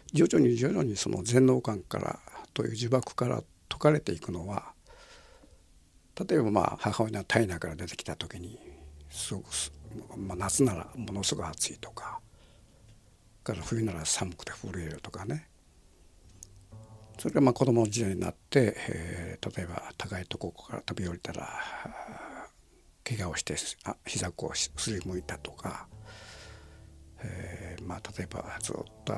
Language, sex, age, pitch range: Japanese, male, 60-79, 90-115 Hz